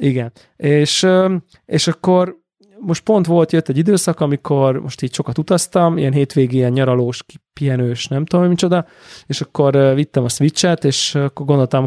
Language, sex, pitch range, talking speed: Hungarian, male, 125-155 Hz, 155 wpm